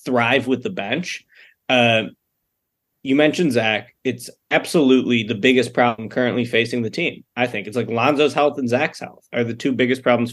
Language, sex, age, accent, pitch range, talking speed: English, male, 20-39, American, 125-195 Hz, 180 wpm